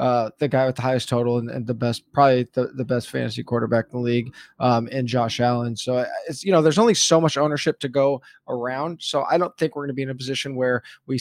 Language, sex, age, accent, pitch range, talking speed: English, male, 20-39, American, 125-155 Hz, 260 wpm